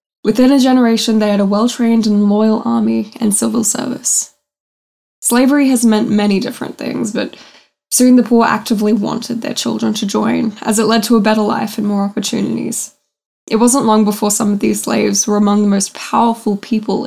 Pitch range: 205-235 Hz